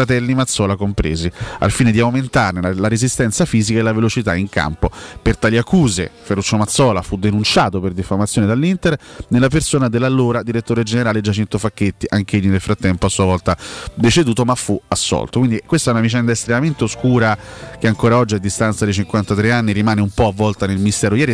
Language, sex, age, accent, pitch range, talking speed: Italian, male, 30-49, native, 100-125 Hz, 185 wpm